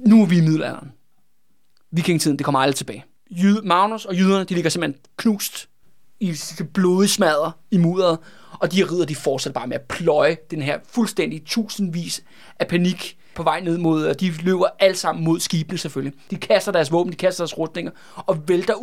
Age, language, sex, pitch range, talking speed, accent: 30-49, Danish, male, 165-200 Hz, 195 wpm, native